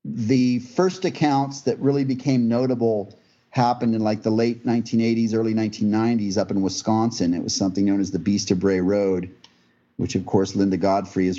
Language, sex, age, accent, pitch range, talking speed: English, male, 40-59, American, 100-125 Hz, 180 wpm